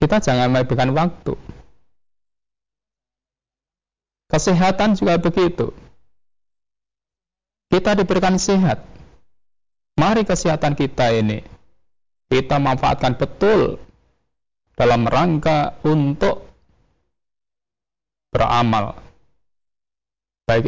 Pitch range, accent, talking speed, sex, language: 120-175 Hz, native, 65 wpm, male, Indonesian